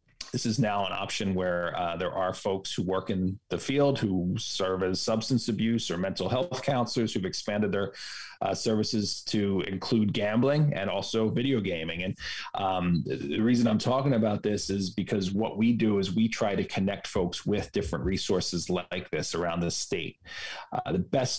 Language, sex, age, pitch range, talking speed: English, male, 30-49, 95-120 Hz, 190 wpm